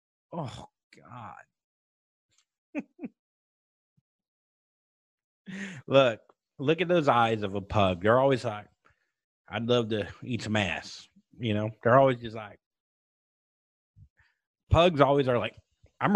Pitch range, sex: 110-130 Hz, male